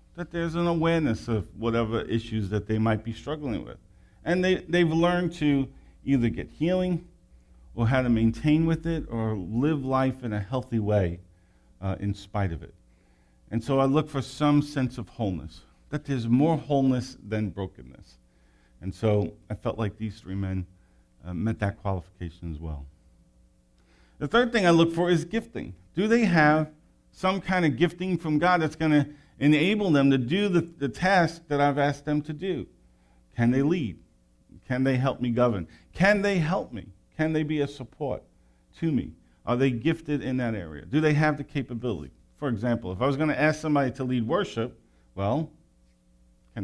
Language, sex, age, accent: English, male, 50-69, American